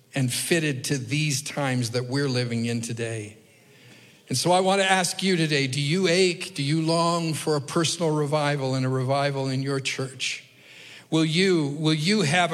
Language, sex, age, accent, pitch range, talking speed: English, male, 50-69, American, 160-265 Hz, 185 wpm